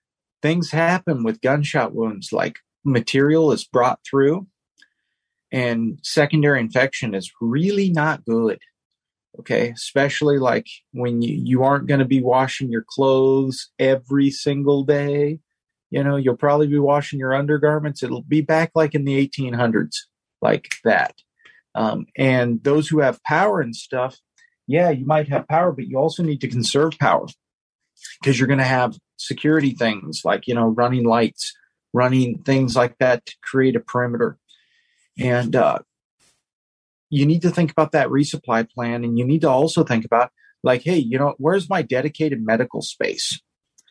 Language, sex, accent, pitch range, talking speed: English, male, American, 125-155 Hz, 160 wpm